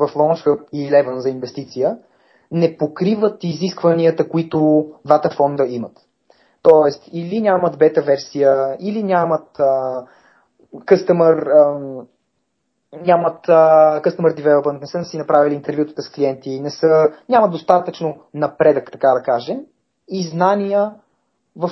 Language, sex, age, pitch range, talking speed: Bulgarian, male, 30-49, 150-200 Hz, 115 wpm